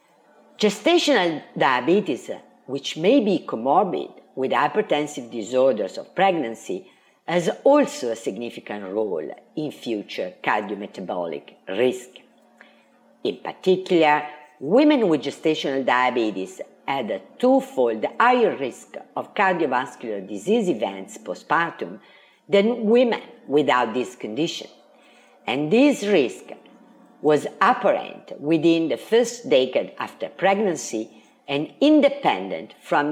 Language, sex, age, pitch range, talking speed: English, female, 50-69, 130-215 Hz, 100 wpm